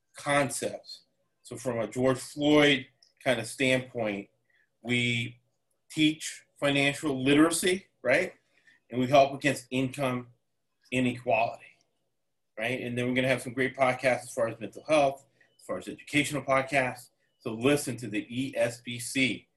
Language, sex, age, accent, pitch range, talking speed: English, male, 40-59, American, 115-135 Hz, 140 wpm